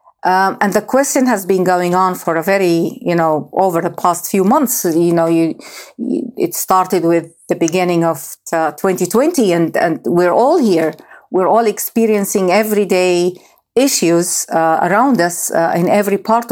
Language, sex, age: English, female, 50-69